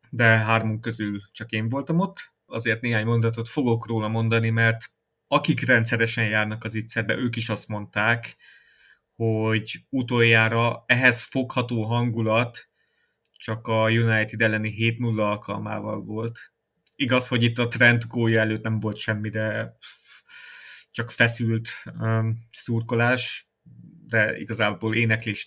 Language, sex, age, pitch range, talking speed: Hungarian, male, 30-49, 110-120 Hz, 120 wpm